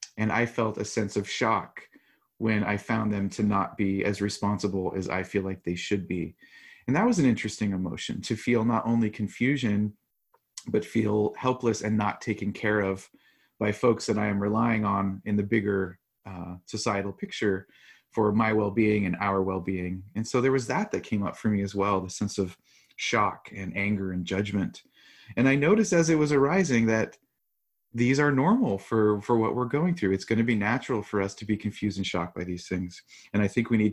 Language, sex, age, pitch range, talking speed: English, male, 30-49, 95-115 Hz, 210 wpm